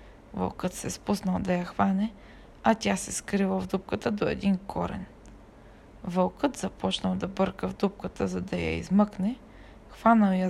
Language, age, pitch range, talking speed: Bulgarian, 20-39, 185-230 Hz, 160 wpm